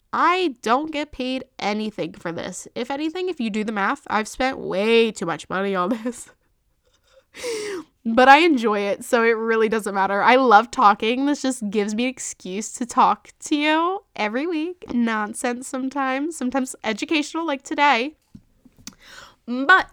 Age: 10-29